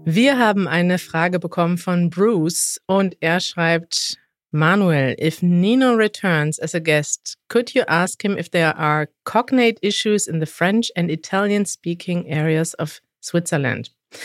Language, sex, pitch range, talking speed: German, female, 170-215 Hz, 145 wpm